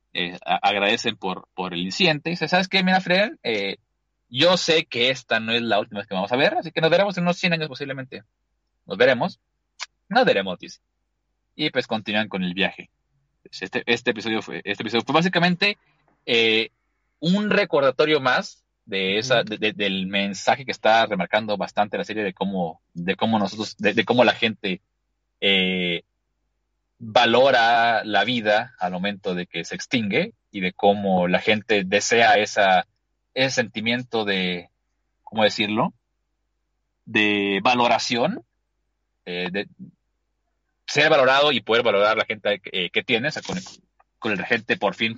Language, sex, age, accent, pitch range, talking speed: Spanish, male, 30-49, Mexican, 95-145 Hz, 170 wpm